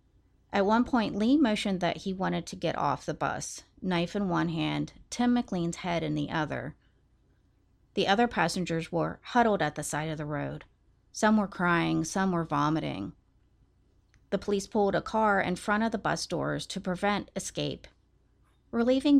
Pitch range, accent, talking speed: 140-200 Hz, American, 170 wpm